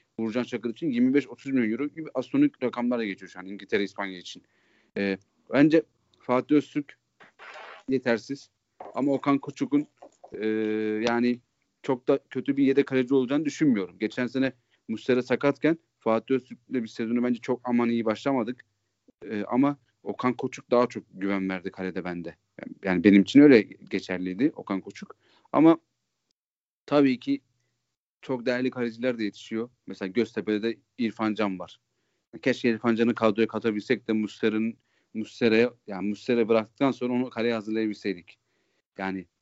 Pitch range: 105-125 Hz